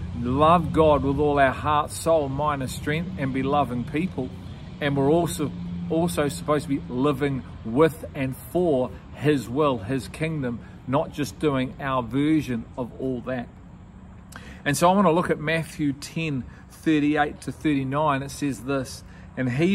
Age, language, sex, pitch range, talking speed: 40-59, English, male, 130-160 Hz, 165 wpm